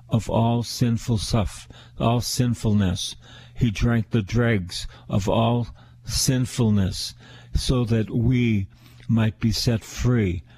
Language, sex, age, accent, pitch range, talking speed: English, male, 50-69, American, 105-120 Hz, 115 wpm